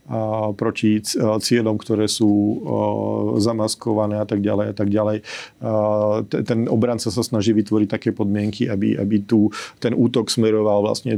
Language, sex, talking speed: Slovak, male, 145 wpm